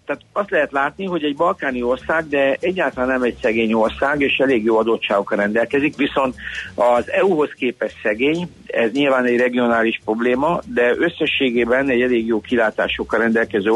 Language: Hungarian